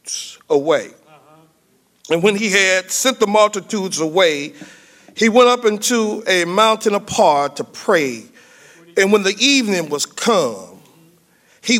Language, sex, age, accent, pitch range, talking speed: English, male, 50-69, American, 185-240 Hz, 125 wpm